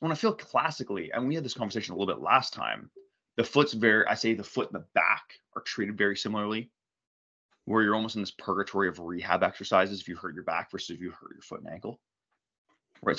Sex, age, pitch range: male, 20-39, 85-105 Hz